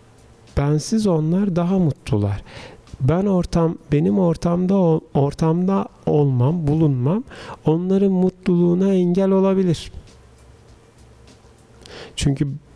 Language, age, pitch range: Turkish, 40-59, 130-180 Hz